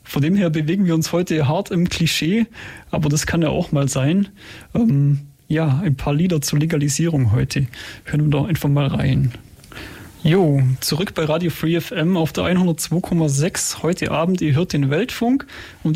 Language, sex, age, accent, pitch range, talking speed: German, male, 30-49, German, 150-195 Hz, 175 wpm